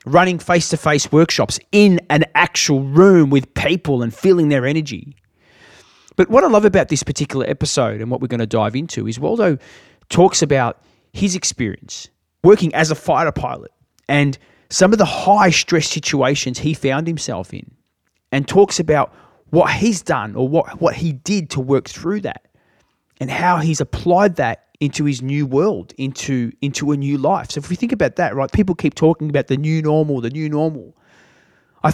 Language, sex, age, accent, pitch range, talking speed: English, male, 30-49, Australian, 125-160 Hz, 180 wpm